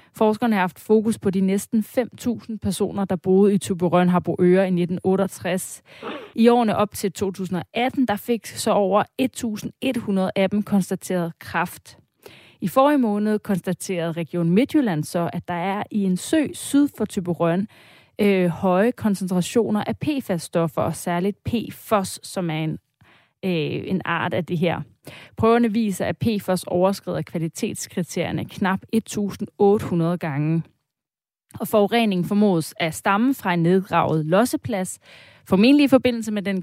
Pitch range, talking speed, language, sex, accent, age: 175-220 Hz, 135 wpm, Danish, female, native, 30-49